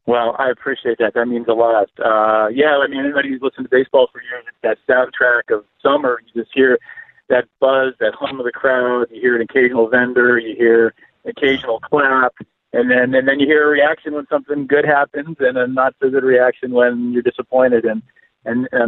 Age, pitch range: 40-59, 120-150 Hz